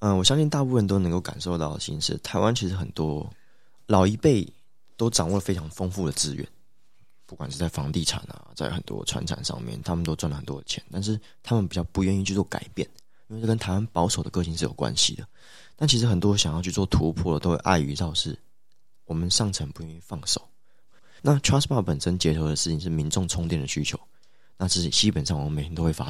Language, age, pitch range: Chinese, 20-39, 85-110 Hz